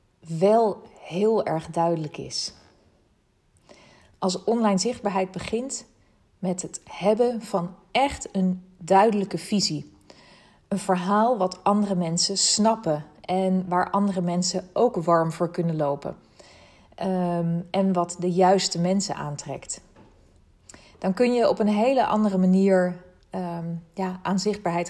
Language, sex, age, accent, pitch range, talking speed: Dutch, female, 40-59, Dutch, 170-195 Hz, 115 wpm